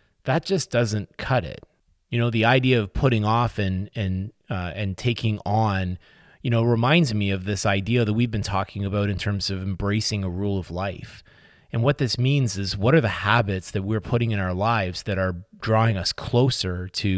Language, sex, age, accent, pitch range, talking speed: English, male, 30-49, American, 100-130 Hz, 205 wpm